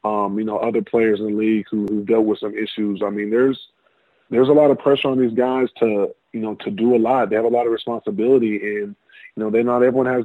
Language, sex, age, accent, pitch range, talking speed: English, male, 20-39, American, 110-125 Hz, 270 wpm